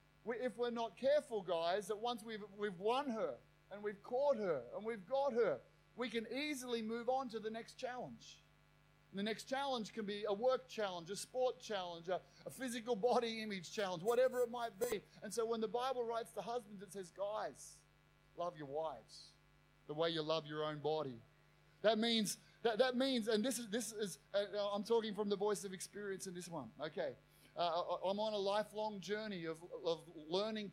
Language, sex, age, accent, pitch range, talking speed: English, male, 30-49, Australian, 175-230 Hz, 200 wpm